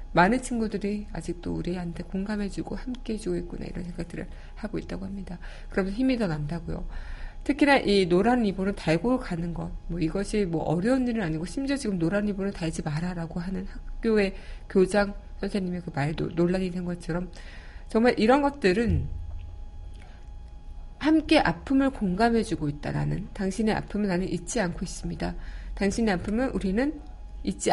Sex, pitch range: female, 170-215 Hz